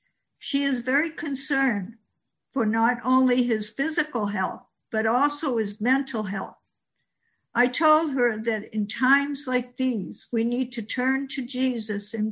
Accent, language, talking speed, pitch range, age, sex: American, English, 145 wpm, 220-260 Hz, 60-79, female